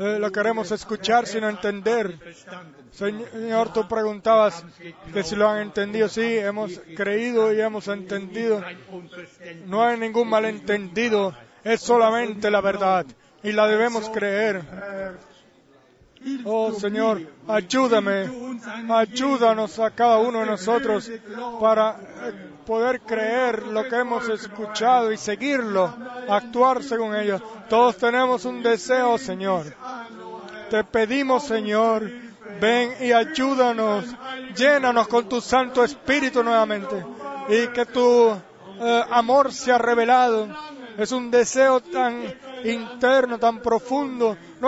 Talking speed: 115 wpm